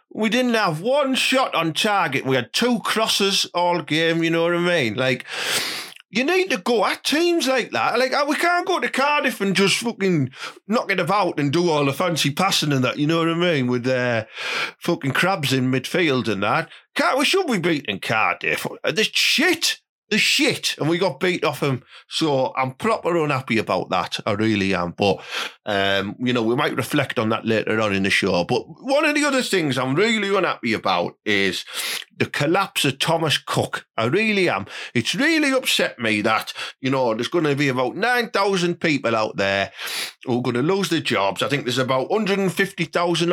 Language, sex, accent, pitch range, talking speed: English, male, British, 125-200 Hz, 205 wpm